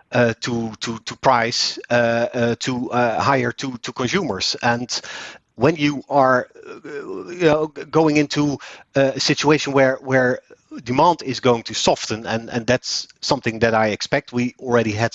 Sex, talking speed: male, 160 wpm